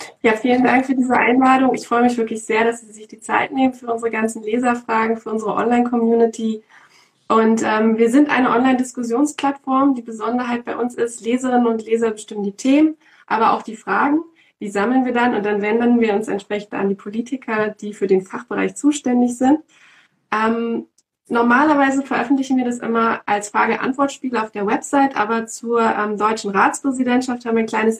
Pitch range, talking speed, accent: 215-250 Hz, 185 wpm, German